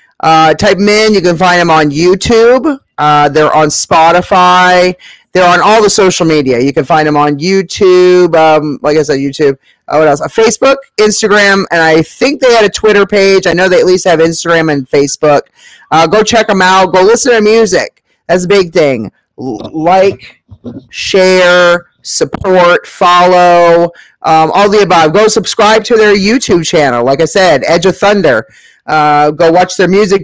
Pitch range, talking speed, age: 160-200 Hz, 185 wpm, 30-49